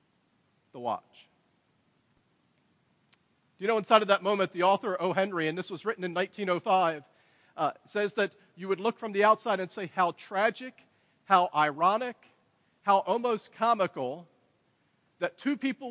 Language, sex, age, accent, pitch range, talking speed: English, male, 40-59, American, 180-220 Hz, 150 wpm